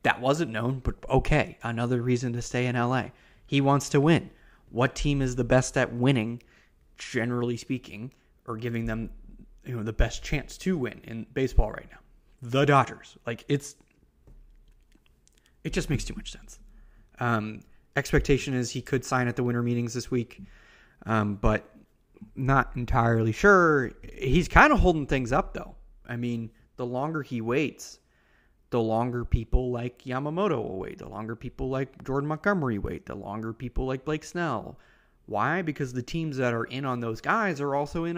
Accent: American